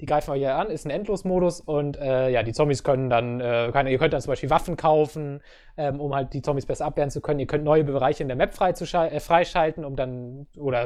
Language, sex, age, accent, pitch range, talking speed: English, male, 20-39, German, 135-170 Hz, 250 wpm